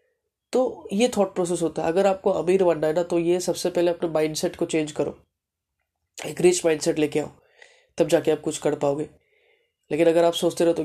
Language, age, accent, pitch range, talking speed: Hindi, 20-39, native, 155-185 Hz, 215 wpm